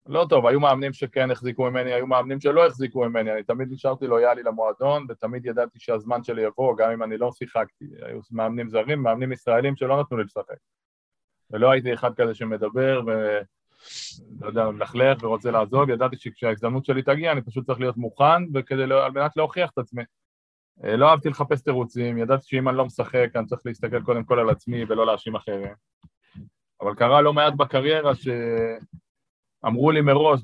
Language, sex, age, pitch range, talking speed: Hebrew, male, 30-49, 115-140 Hz, 150 wpm